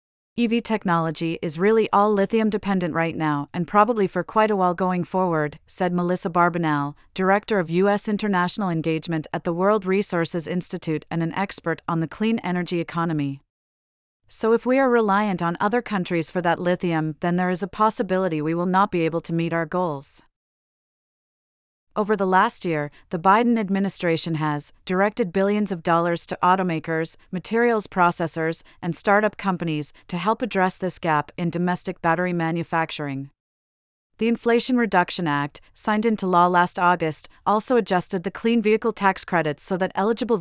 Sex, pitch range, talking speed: female, 165-200 Hz, 160 wpm